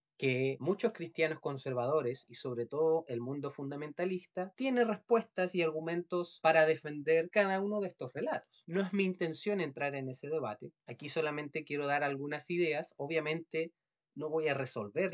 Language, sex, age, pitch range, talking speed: Spanish, male, 30-49, 140-180 Hz, 160 wpm